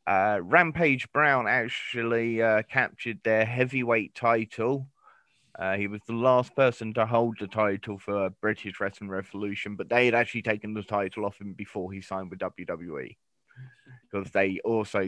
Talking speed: 160 wpm